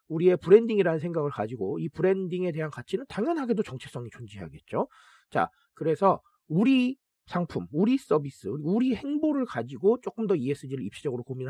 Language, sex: Korean, male